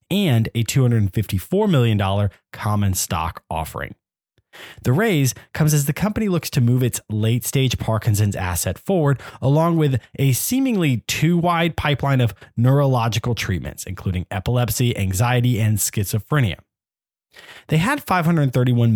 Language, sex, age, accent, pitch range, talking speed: English, male, 20-39, American, 105-140 Hz, 120 wpm